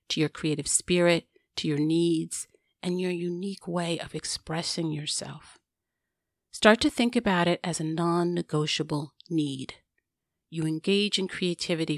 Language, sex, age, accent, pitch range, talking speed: English, female, 40-59, American, 155-200 Hz, 135 wpm